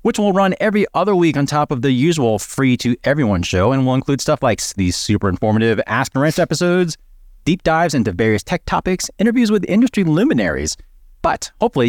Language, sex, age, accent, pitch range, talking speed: English, male, 30-49, American, 115-170 Hz, 185 wpm